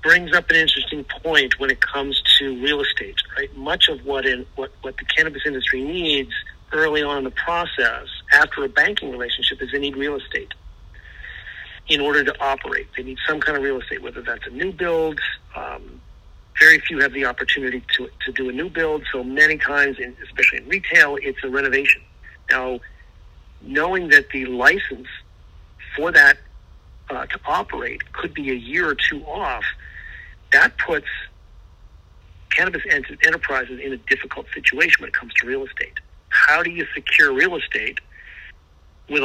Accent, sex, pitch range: American, male, 100-145 Hz